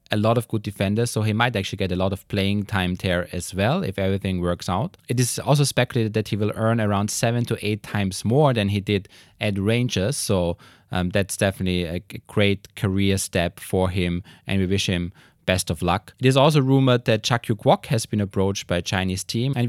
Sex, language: male, English